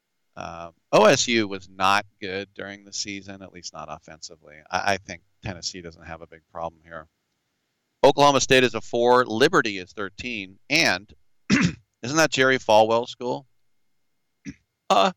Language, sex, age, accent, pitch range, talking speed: English, male, 40-59, American, 95-120 Hz, 145 wpm